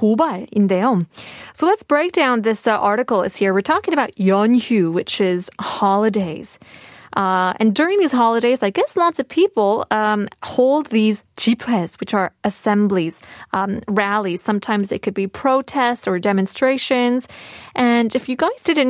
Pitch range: 200-265 Hz